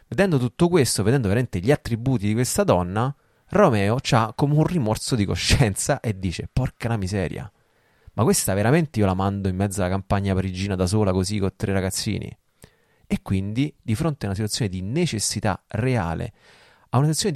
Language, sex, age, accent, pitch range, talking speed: Italian, male, 30-49, native, 100-130 Hz, 175 wpm